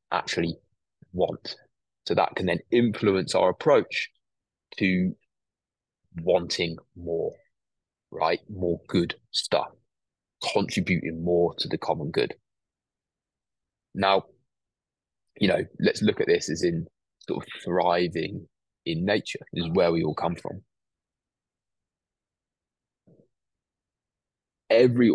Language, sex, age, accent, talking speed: English, male, 20-39, British, 105 wpm